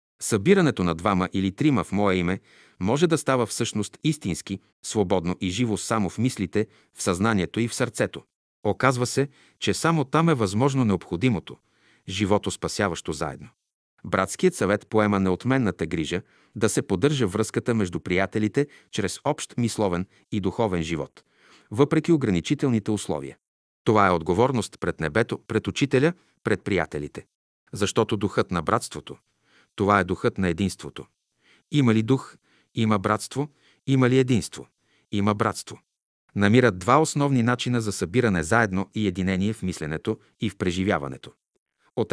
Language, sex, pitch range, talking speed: Bulgarian, male, 95-125 Hz, 140 wpm